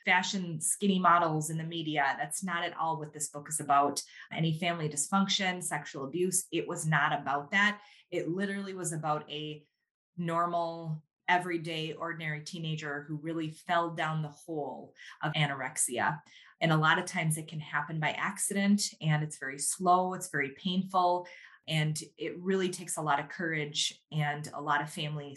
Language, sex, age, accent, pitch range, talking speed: English, female, 20-39, American, 155-185 Hz, 170 wpm